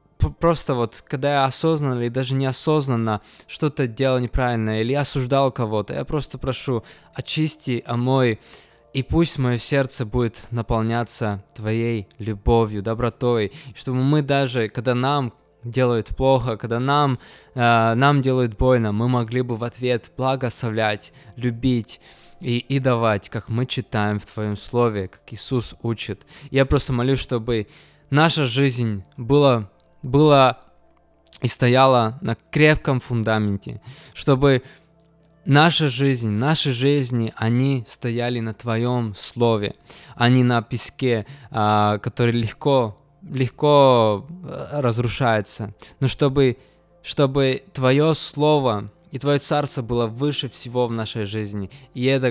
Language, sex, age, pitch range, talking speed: Russian, male, 20-39, 115-140 Hz, 125 wpm